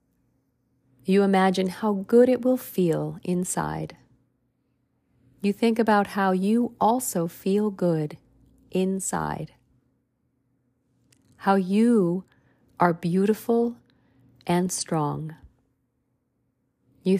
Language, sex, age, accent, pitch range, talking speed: English, female, 40-59, American, 130-190 Hz, 85 wpm